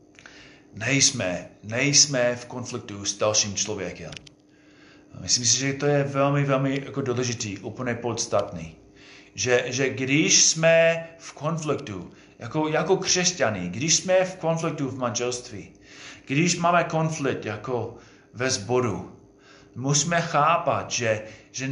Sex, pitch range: male, 120-165 Hz